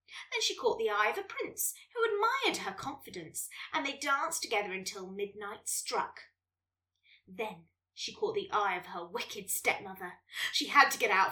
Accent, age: British, 20-39